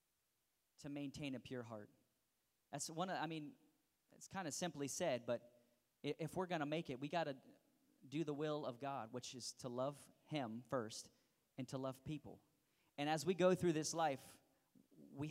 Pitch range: 125-155 Hz